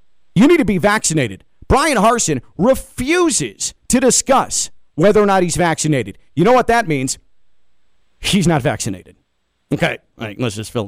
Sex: male